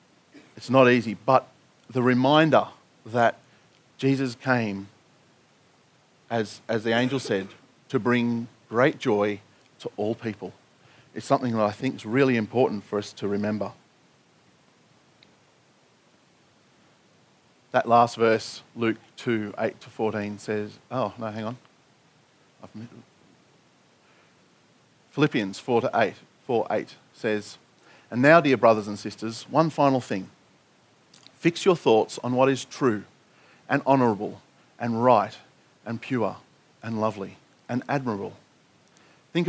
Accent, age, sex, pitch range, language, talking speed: Australian, 40-59, male, 110-135 Hz, English, 125 wpm